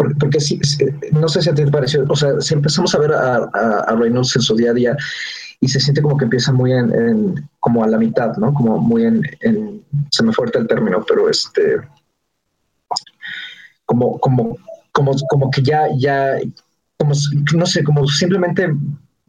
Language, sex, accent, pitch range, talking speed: Spanish, male, Mexican, 120-155 Hz, 195 wpm